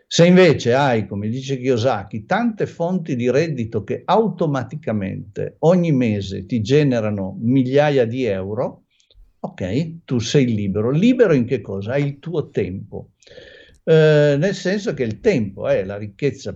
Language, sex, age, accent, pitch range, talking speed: Italian, male, 50-69, native, 110-145 Hz, 145 wpm